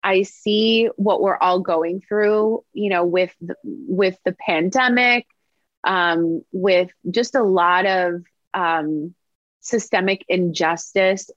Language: English